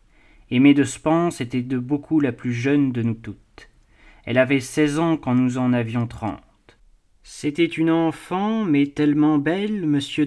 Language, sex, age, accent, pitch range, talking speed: French, male, 30-49, French, 125-155 Hz, 165 wpm